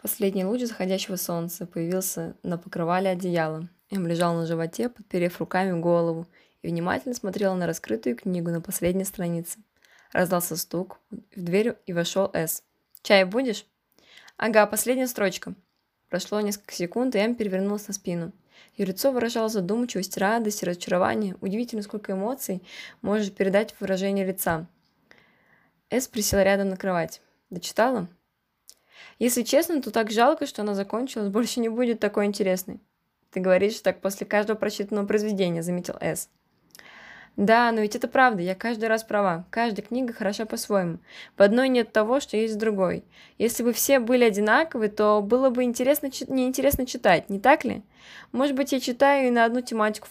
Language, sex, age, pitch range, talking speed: Russian, female, 20-39, 185-230 Hz, 155 wpm